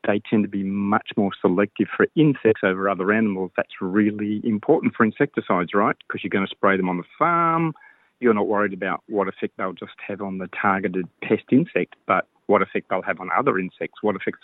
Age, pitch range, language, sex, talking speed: 40-59, 100-135 Hz, Portuguese, male, 210 wpm